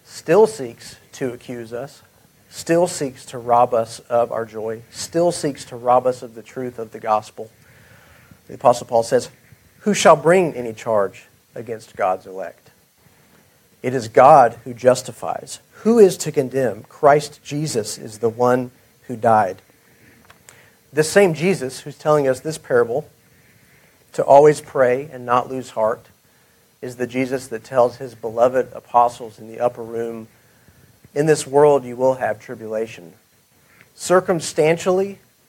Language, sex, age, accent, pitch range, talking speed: English, male, 40-59, American, 115-150 Hz, 145 wpm